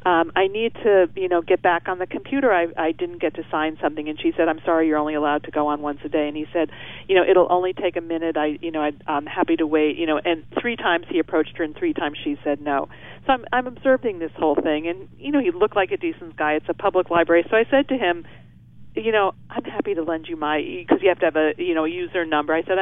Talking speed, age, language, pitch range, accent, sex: 285 wpm, 40-59, English, 155-195 Hz, American, female